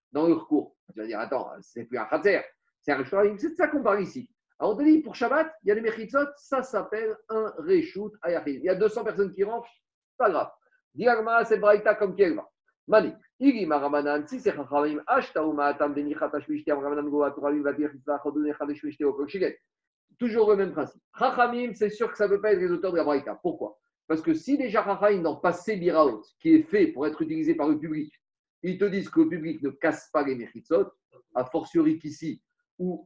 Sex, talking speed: male, 225 wpm